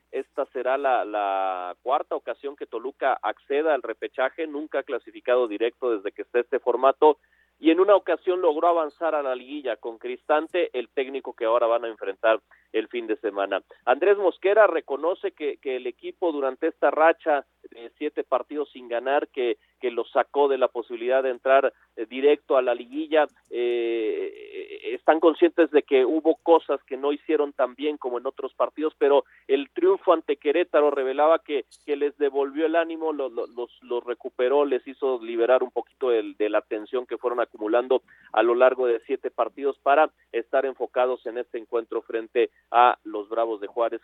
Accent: Mexican